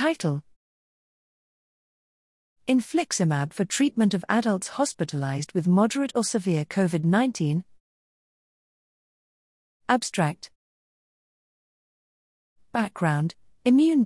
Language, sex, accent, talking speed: English, female, British, 65 wpm